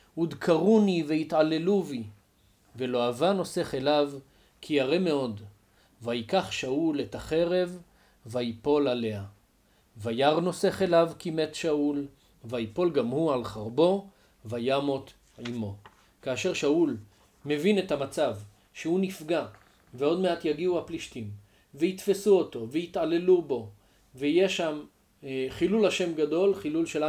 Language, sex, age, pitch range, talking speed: Hebrew, male, 40-59, 120-170 Hz, 115 wpm